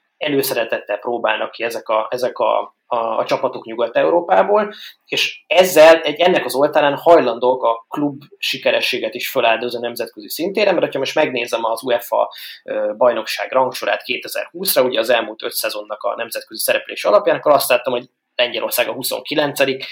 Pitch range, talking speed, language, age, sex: 115-160 Hz, 150 wpm, Hungarian, 20-39, male